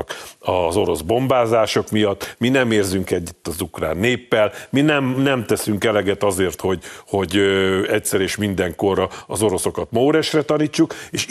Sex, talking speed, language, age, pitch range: male, 150 wpm, Hungarian, 50-69, 110-140 Hz